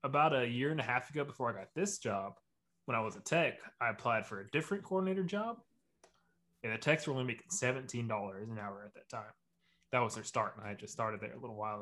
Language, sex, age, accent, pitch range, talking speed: English, male, 20-39, American, 110-140 Hz, 250 wpm